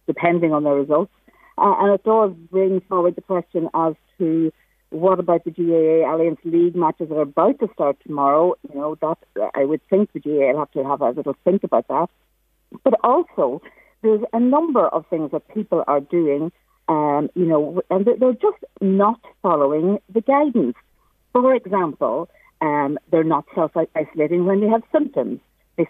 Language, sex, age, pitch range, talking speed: English, female, 50-69, 155-215 Hz, 175 wpm